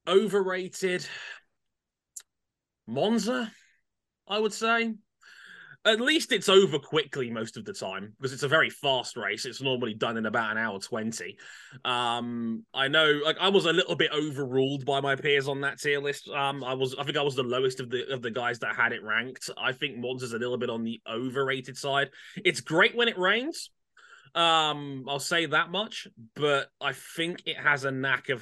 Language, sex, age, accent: English, male, 20-39, British